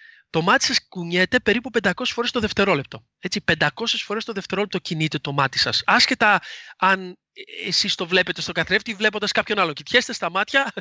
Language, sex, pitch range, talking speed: Greek, male, 170-250 Hz, 180 wpm